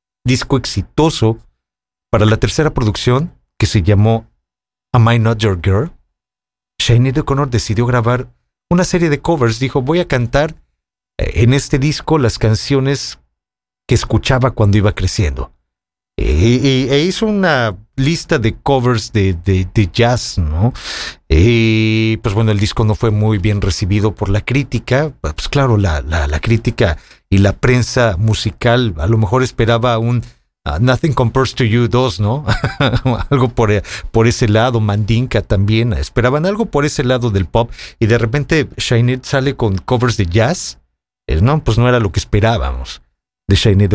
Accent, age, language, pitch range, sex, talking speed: Mexican, 40-59, English, 100-135 Hz, male, 160 wpm